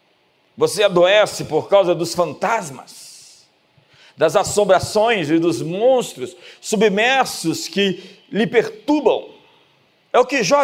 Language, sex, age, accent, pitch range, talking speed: Portuguese, male, 50-69, Brazilian, 195-255 Hz, 105 wpm